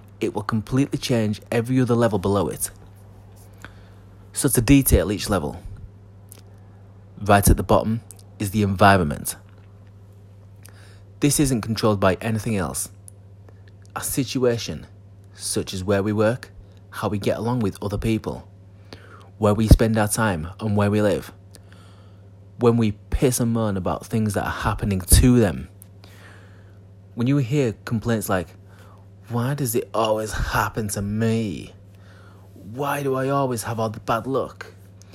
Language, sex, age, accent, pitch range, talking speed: English, male, 20-39, British, 100-110 Hz, 140 wpm